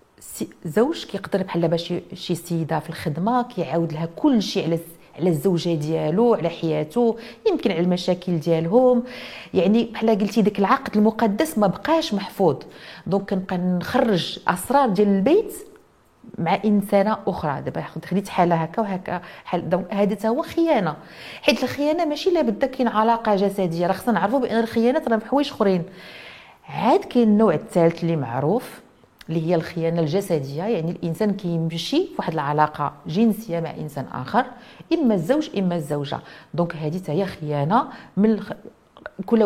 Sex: female